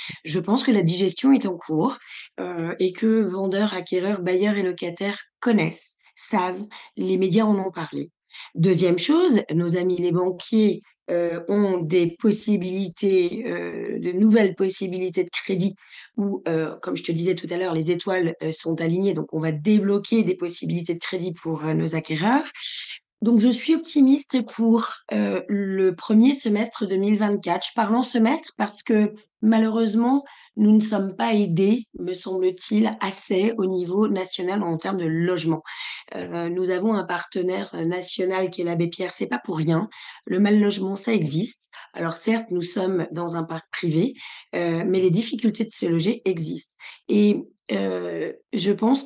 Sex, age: female, 20-39